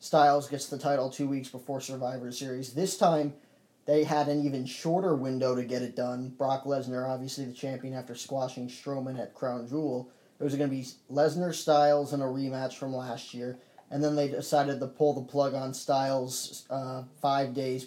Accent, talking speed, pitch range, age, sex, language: American, 195 wpm, 125-140 Hz, 20-39, male, English